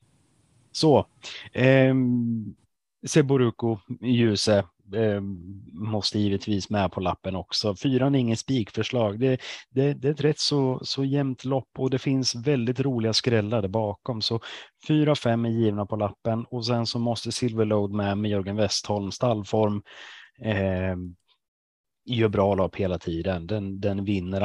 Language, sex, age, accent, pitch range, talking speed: Swedish, male, 30-49, native, 100-125 Hz, 140 wpm